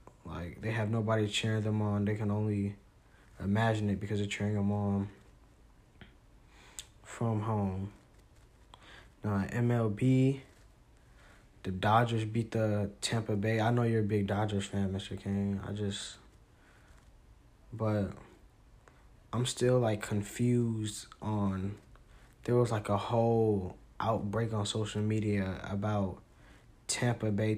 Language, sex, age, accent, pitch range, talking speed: English, male, 20-39, American, 100-110 Hz, 120 wpm